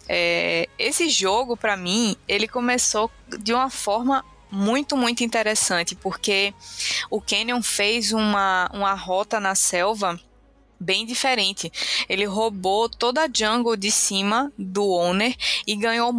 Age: 20-39